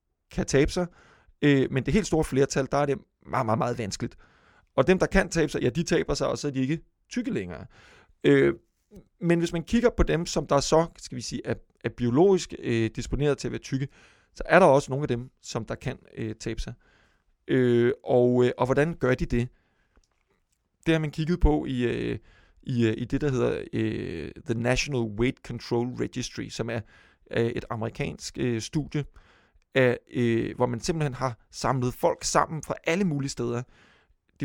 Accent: native